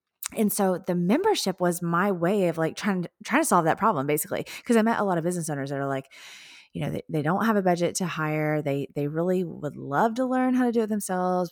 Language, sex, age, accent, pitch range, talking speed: English, female, 20-39, American, 155-205 Hz, 260 wpm